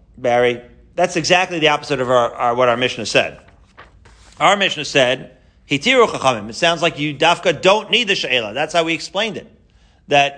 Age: 40-59